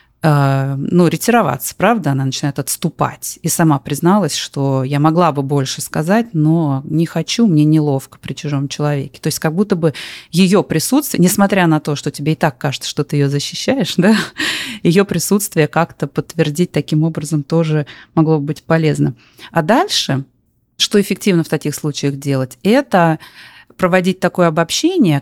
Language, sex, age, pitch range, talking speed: Russian, female, 30-49, 145-185 Hz, 155 wpm